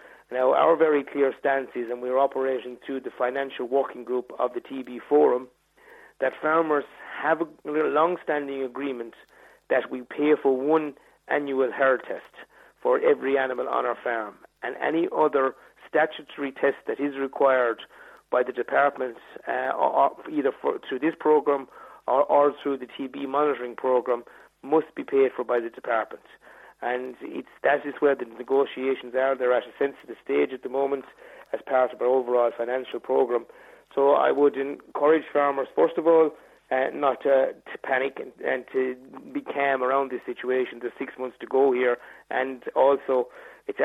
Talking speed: 170 wpm